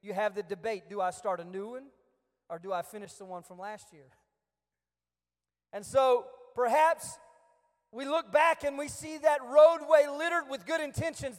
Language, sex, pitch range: English, male, 225-315 Hz